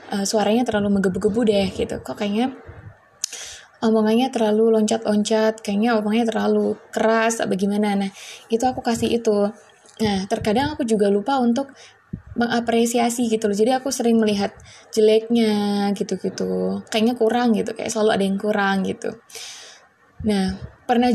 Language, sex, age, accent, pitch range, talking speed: Indonesian, female, 20-39, native, 210-235 Hz, 135 wpm